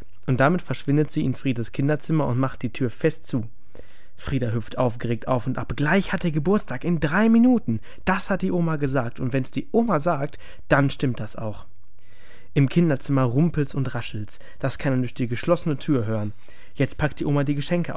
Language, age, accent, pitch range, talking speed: German, 20-39, German, 115-160 Hz, 195 wpm